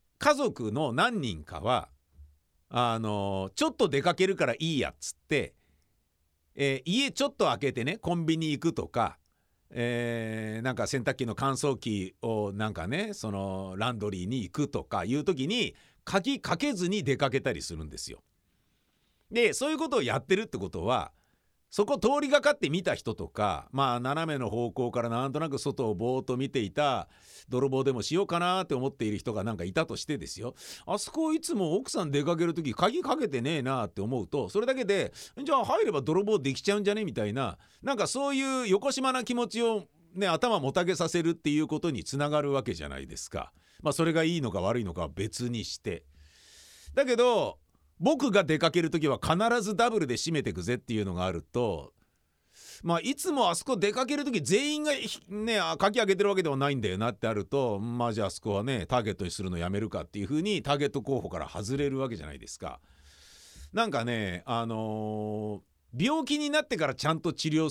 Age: 50-69